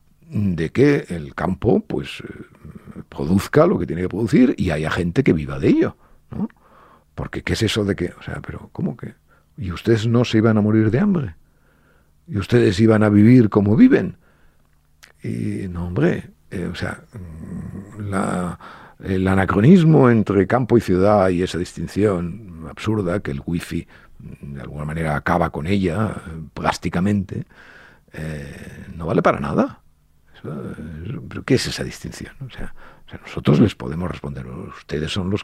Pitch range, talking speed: 80-105 Hz, 155 wpm